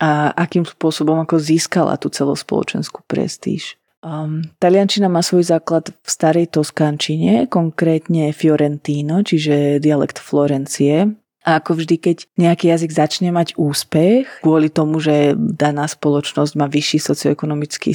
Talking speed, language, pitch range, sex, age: 125 wpm, Slovak, 150-170 Hz, female, 30-49